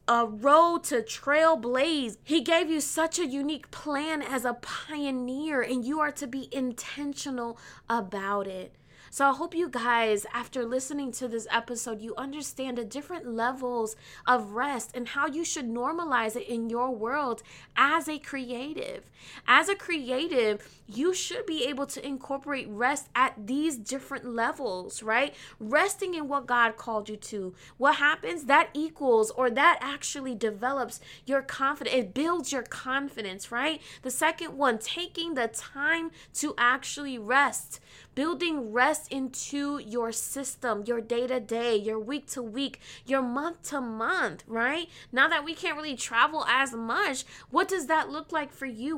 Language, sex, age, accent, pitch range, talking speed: English, female, 20-39, American, 240-300 Hz, 150 wpm